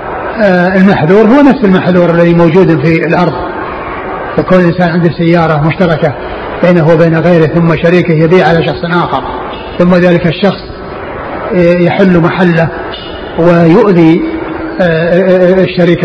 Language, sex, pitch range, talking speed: Arabic, male, 165-185 Hz, 110 wpm